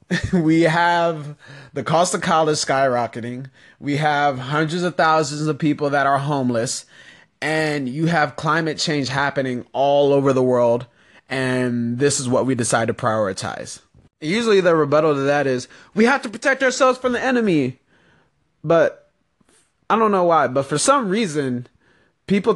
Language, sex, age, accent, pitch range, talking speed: English, male, 20-39, American, 135-170 Hz, 155 wpm